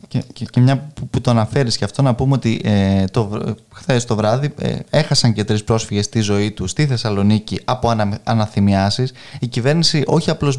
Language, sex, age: Greek, male, 20-39